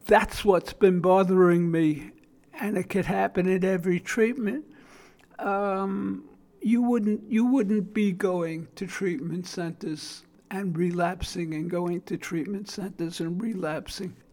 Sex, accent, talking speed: male, American, 130 wpm